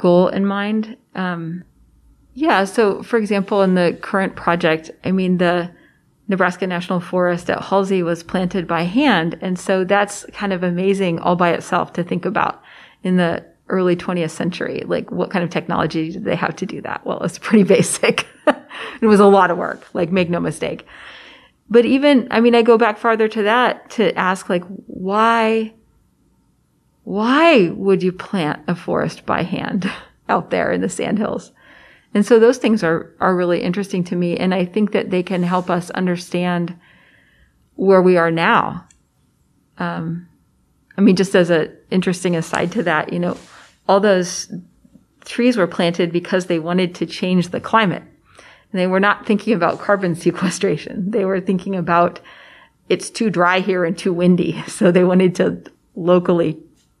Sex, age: female, 30-49